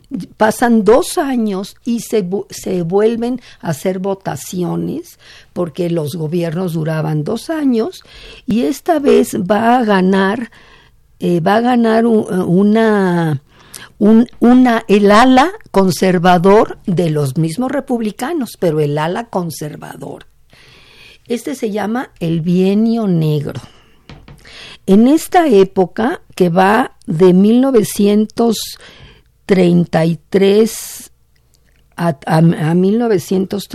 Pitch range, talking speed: 170-225 Hz, 100 wpm